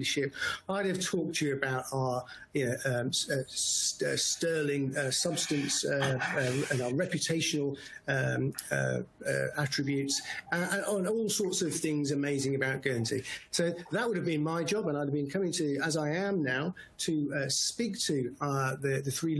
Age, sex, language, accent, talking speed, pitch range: 50-69, male, English, British, 190 wpm, 135-170 Hz